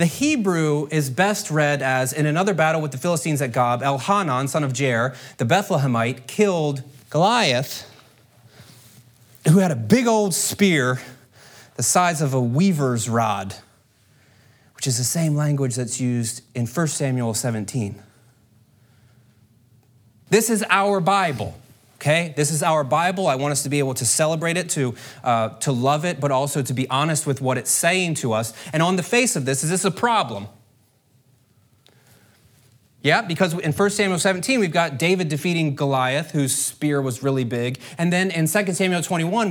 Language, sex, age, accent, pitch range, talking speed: English, male, 30-49, American, 125-170 Hz, 170 wpm